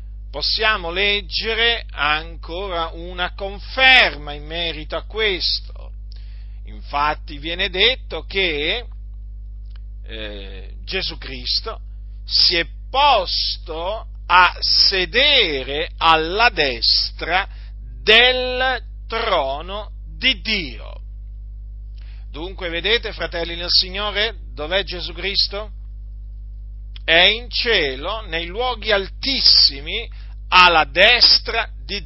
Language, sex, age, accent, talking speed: Italian, male, 40-59, native, 80 wpm